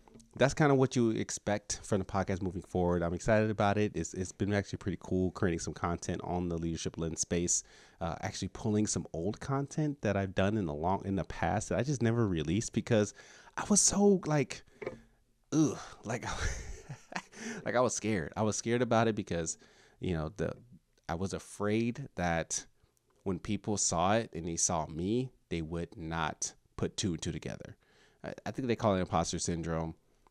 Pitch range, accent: 80-105 Hz, American